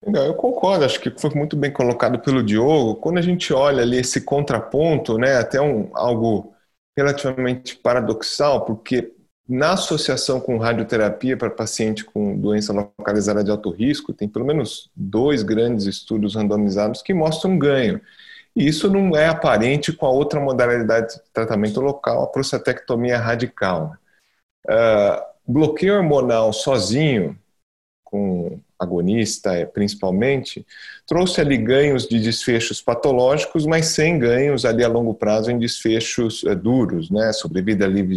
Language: Portuguese